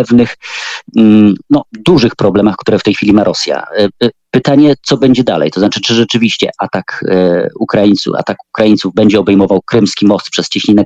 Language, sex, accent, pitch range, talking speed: Polish, male, native, 100-120 Hz, 155 wpm